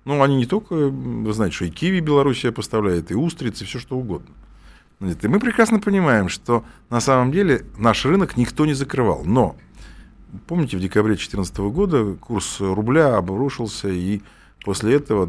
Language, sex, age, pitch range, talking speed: Russian, male, 50-69, 100-155 Hz, 165 wpm